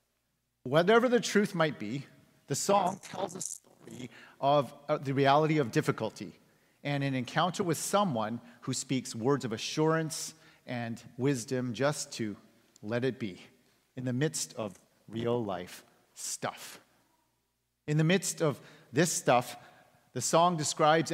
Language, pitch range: English, 115-155 Hz